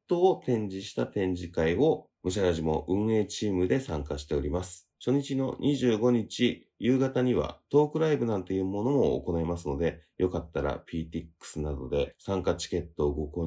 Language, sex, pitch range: Japanese, male, 80-110 Hz